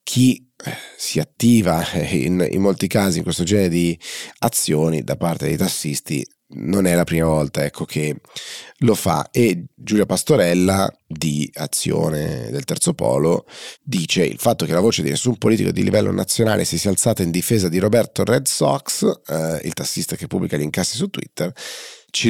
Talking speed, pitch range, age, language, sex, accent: 170 wpm, 75-115 Hz, 30-49, Italian, male, native